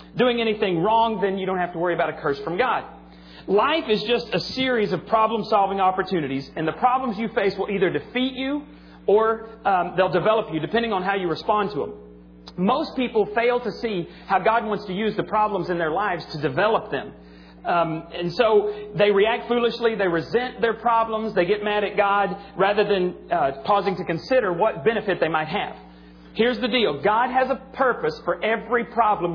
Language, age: English, 40-59